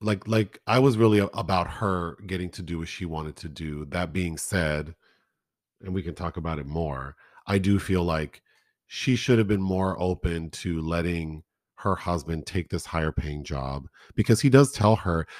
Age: 40-59